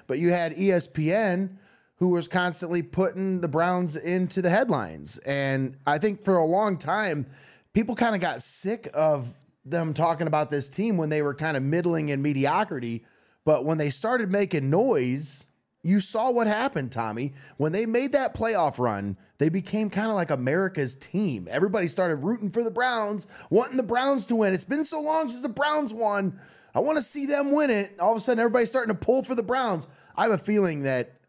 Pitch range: 135-200 Hz